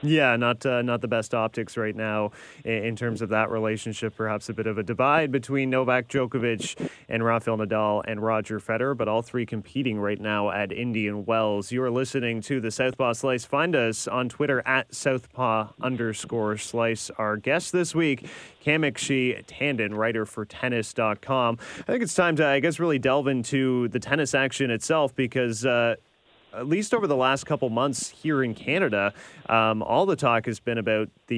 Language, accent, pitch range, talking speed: English, American, 110-135 Hz, 185 wpm